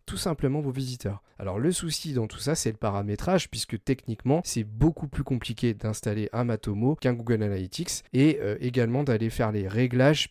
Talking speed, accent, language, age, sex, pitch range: 185 wpm, French, French, 30-49, male, 110-135 Hz